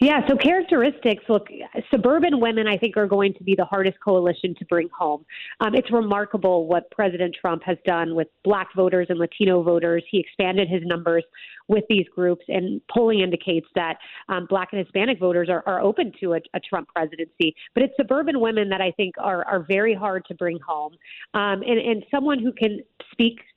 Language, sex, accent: English, female, American